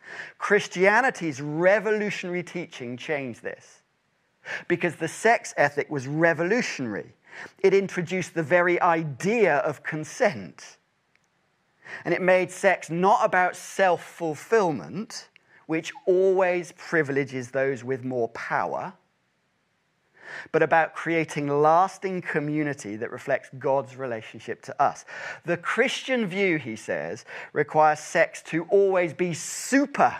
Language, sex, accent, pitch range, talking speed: English, male, British, 140-180 Hz, 105 wpm